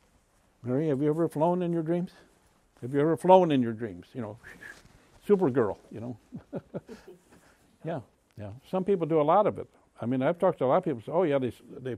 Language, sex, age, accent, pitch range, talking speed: English, male, 60-79, American, 120-145 Hz, 215 wpm